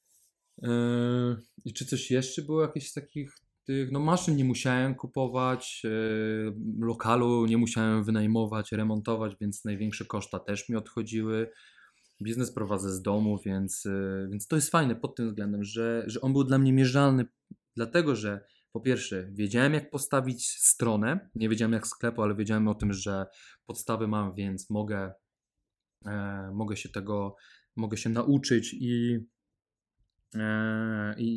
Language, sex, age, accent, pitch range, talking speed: Polish, male, 20-39, native, 105-125 Hz, 145 wpm